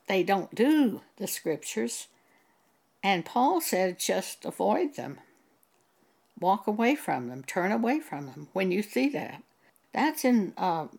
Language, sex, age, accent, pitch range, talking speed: English, female, 60-79, American, 180-245 Hz, 140 wpm